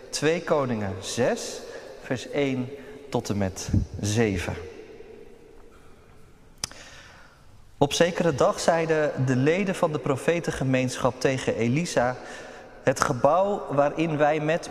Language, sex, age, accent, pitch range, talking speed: Dutch, male, 40-59, Dutch, 120-170 Hz, 100 wpm